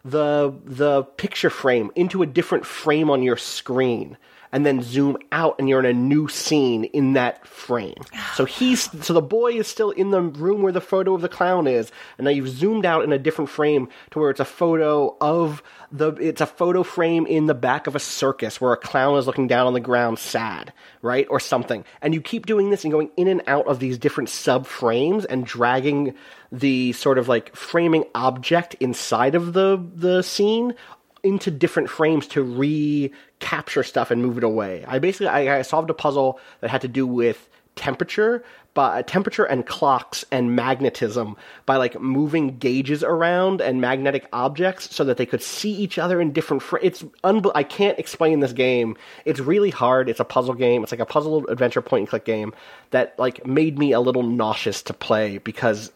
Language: English